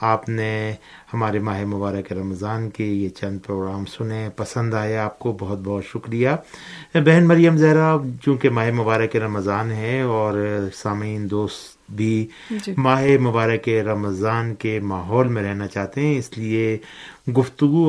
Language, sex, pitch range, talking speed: Urdu, male, 100-125 Hz, 140 wpm